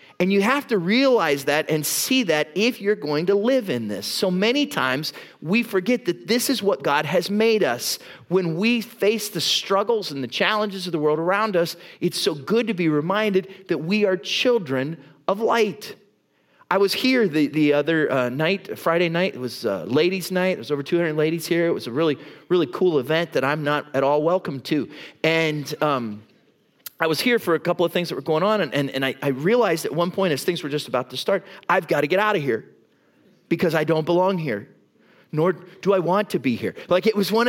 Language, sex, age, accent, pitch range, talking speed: English, male, 30-49, American, 155-215 Hz, 225 wpm